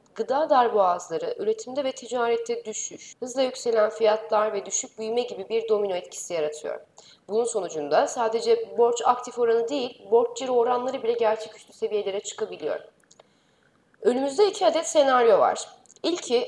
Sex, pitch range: female, 225-305 Hz